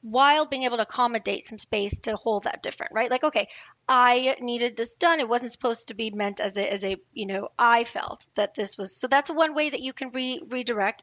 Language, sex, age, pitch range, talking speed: English, female, 30-49, 205-260 Hz, 240 wpm